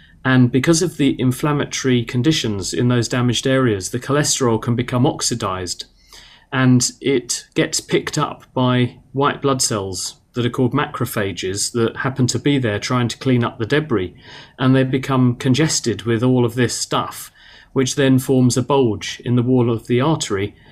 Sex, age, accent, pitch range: male, 40-59, British, 115-135 Hz